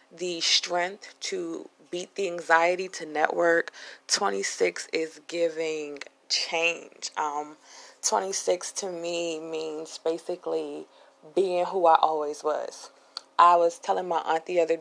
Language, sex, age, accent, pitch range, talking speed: English, female, 20-39, American, 160-185 Hz, 120 wpm